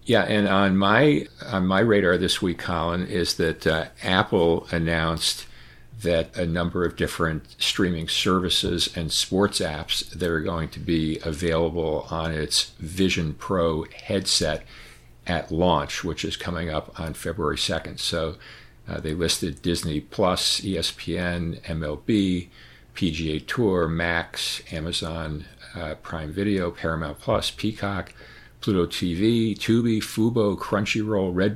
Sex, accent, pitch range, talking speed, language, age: male, American, 80-95 Hz, 130 wpm, English, 50-69